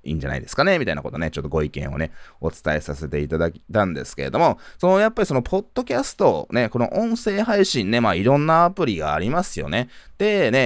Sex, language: male, Japanese